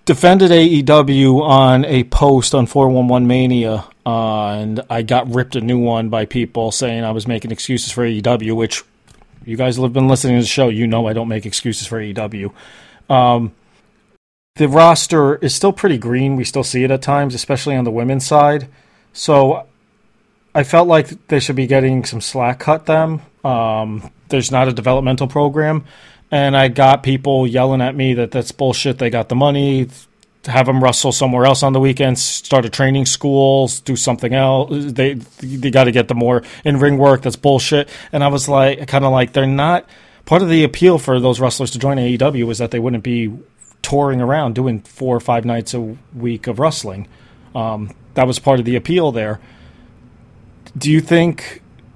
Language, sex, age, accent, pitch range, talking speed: English, male, 30-49, American, 120-140 Hz, 195 wpm